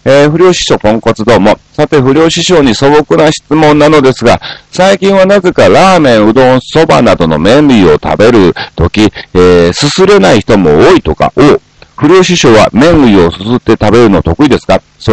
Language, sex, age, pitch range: Japanese, male, 40-59, 105-165 Hz